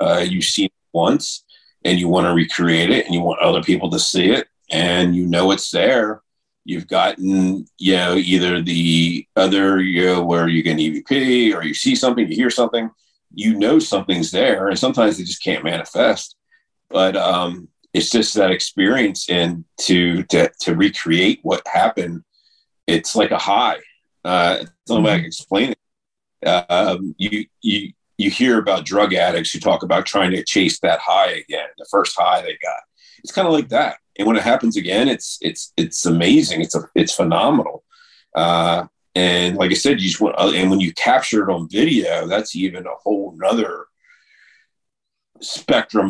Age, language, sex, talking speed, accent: 40-59, English, male, 185 wpm, American